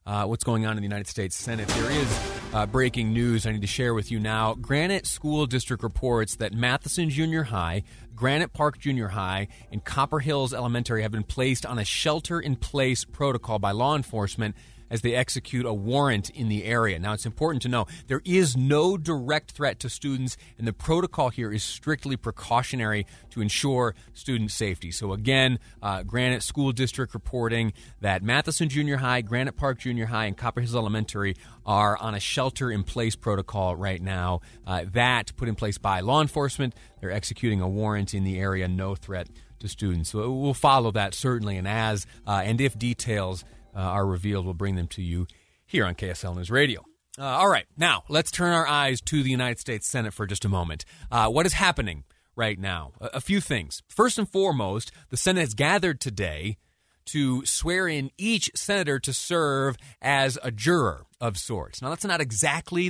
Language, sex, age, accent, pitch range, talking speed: English, male, 30-49, American, 105-140 Hz, 190 wpm